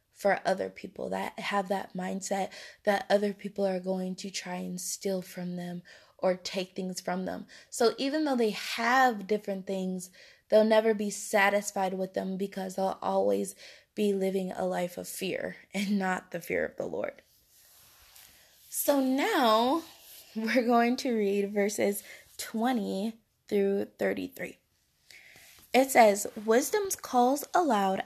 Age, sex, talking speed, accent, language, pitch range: 20-39, female, 145 wpm, American, English, 195-245 Hz